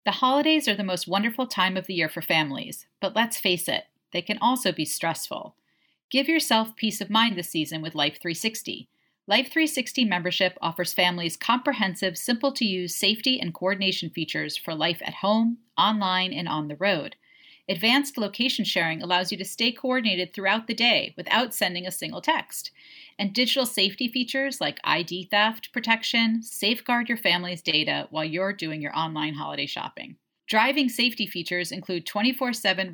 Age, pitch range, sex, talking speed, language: 40-59, 175-235 Hz, female, 160 wpm, English